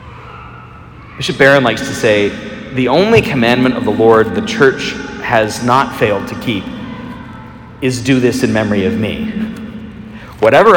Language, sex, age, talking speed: English, male, 40-59, 145 wpm